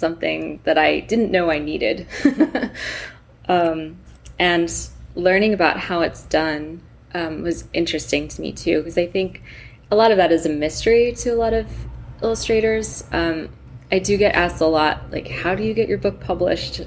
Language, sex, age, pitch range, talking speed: English, female, 20-39, 155-185 Hz, 180 wpm